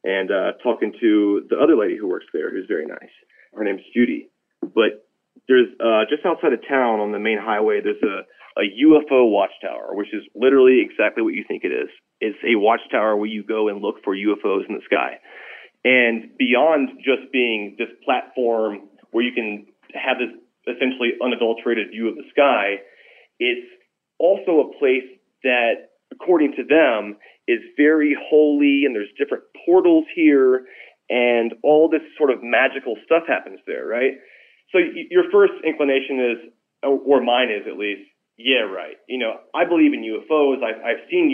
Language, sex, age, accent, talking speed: English, male, 30-49, American, 170 wpm